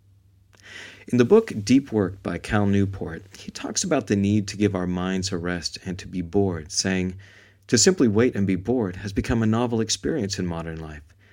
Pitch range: 95-110 Hz